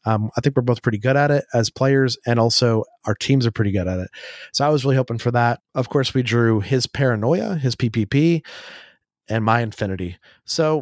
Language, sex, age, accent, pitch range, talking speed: English, male, 30-49, American, 110-130 Hz, 215 wpm